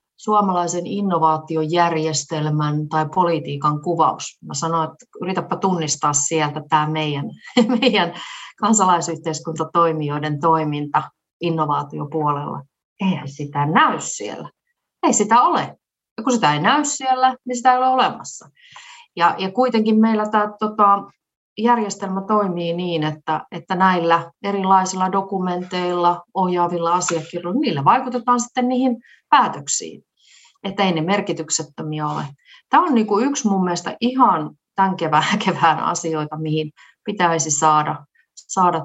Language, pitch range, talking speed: Finnish, 160-220 Hz, 115 wpm